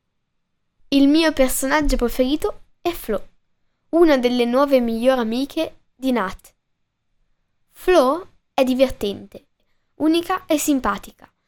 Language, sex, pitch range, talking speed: Italian, female, 230-310 Hz, 100 wpm